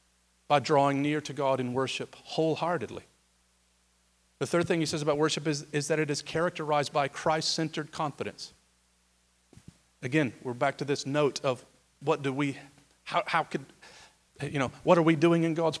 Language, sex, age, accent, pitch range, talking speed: English, male, 40-59, American, 135-180 Hz, 170 wpm